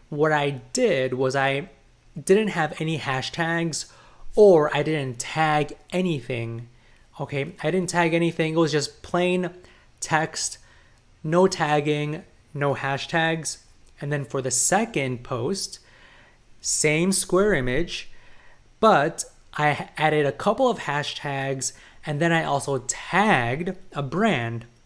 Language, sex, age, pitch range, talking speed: English, male, 20-39, 130-165 Hz, 125 wpm